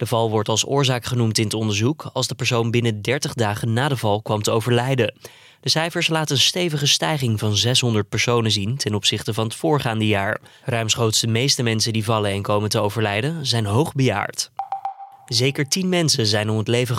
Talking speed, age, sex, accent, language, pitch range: 200 wpm, 20-39, male, Dutch, Dutch, 110-135 Hz